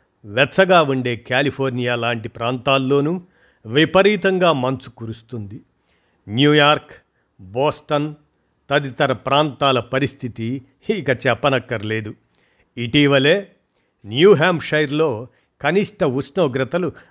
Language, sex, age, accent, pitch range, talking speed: Telugu, male, 50-69, native, 120-150 Hz, 65 wpm